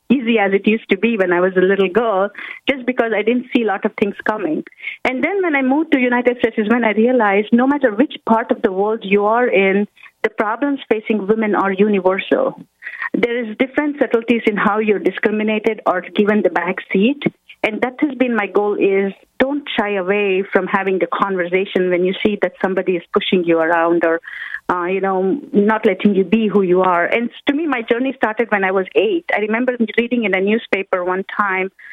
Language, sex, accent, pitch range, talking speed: English, female, Indian, 195-245 Hz, 215 wpm